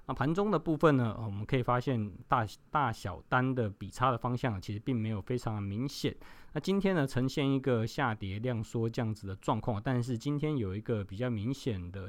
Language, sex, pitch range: Chinese, male, 110-135 Hz